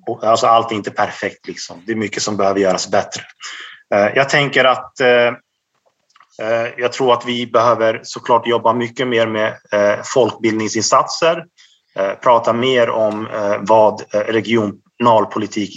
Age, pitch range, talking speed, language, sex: 30-49, 105-125 Hz, 120 wpm, Swedish, male